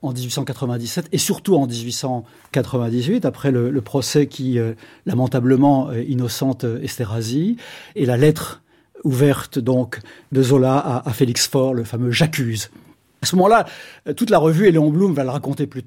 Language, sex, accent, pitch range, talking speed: French, male, French, 130-165 Hz, 165 wpm